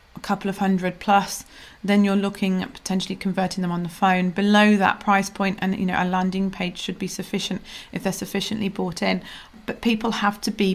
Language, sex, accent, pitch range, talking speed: English, female, British, 175-200 Hz, 210 wpm